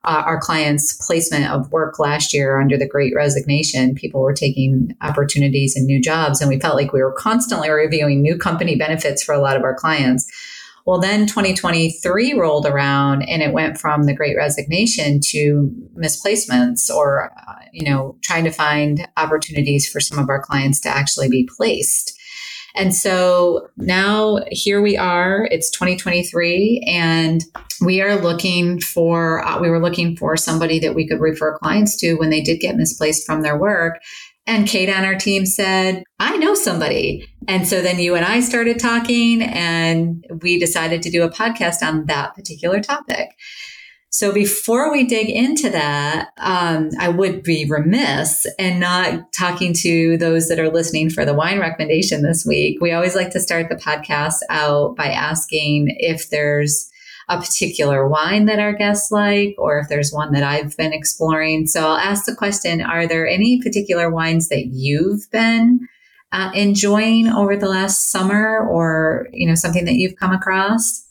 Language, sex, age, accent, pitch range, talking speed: English, female, 30-49, American, 150-200 Hz, 175 wpm